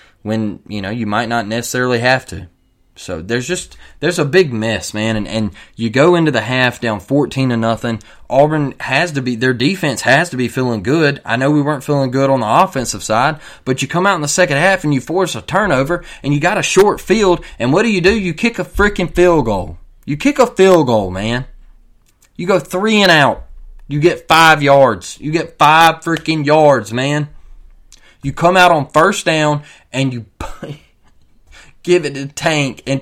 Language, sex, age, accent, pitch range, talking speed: English, male, 20-39, American, 115-150 Hz, 205 wpm